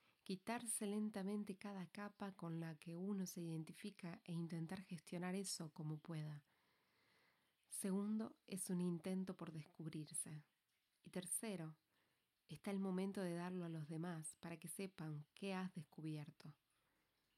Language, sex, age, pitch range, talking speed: English, female, 30-49, 160-190 Hz, 130 wpm